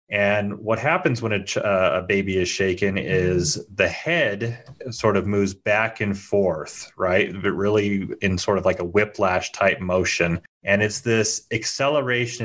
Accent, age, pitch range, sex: American, 30-49, 90-110 Hz, male